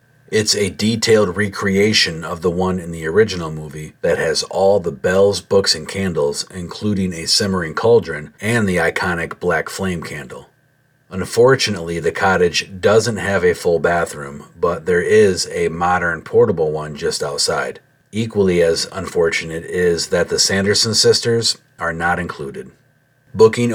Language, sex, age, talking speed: English, male, 40-59, 145 wpm